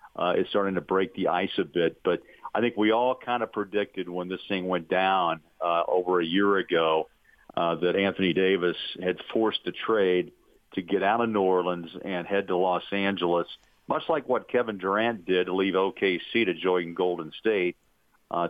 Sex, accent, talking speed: male, American, 195 wpm